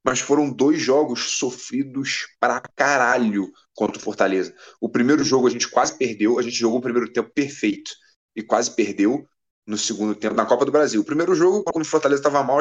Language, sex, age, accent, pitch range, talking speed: Portuguese, male, 20-39, Brazilian, 115-155 Hz, 200 wpm